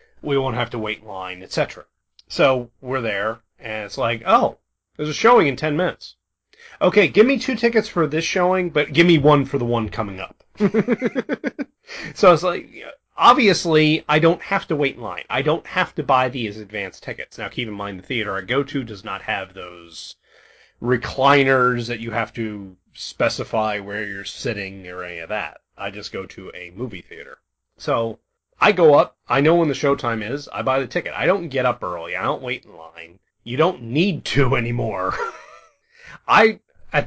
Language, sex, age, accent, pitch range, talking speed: English, male, 30-49, American, 105-150 Hz, 195 wpm